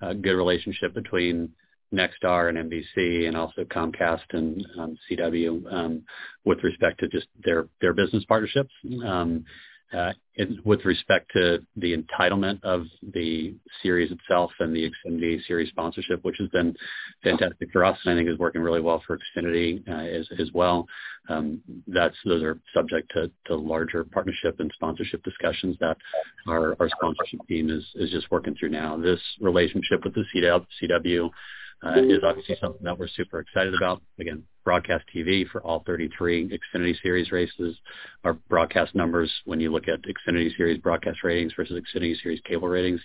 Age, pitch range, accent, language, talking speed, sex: 40-59, 80-90 Hz, American, English, 165 wpm, male